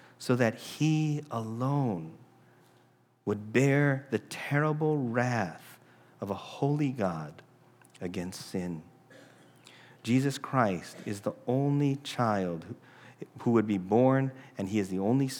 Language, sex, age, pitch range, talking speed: English, male, 40-59, 110-135 Hz, 115 wpm